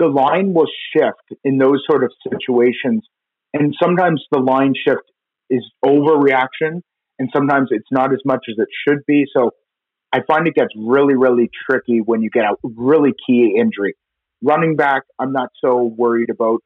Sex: male